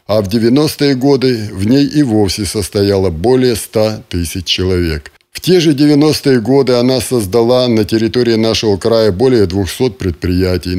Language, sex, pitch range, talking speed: Russian, male, 100-130 Hz, 150 wpm